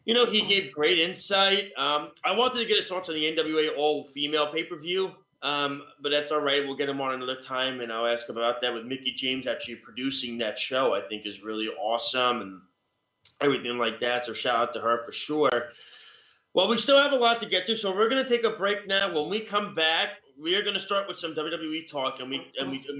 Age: 30-49